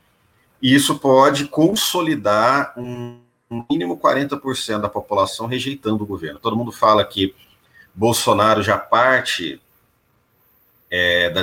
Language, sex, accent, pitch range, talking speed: Portuguese, male, Brazilian, 100-130 Hz, 100 wpm